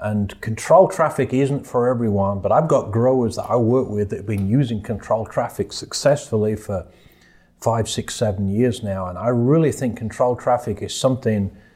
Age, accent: 40-59, British